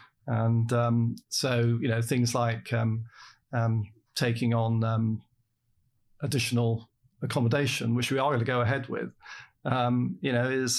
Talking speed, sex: 145 wpm, male